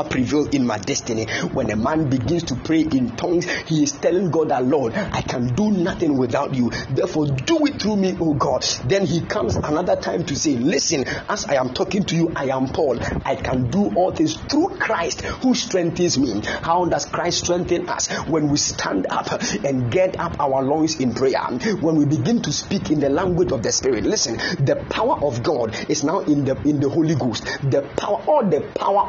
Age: 50-69